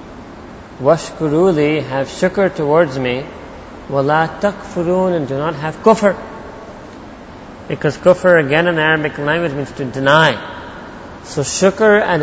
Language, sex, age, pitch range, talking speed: English, male, 40-59, 140-175 Hz, 120 wpm